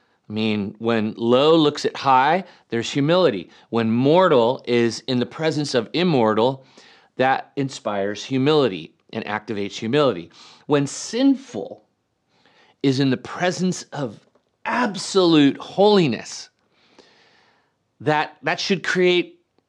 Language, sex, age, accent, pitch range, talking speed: English, male, 40-59, American, 125-200 Hz, 110 wpm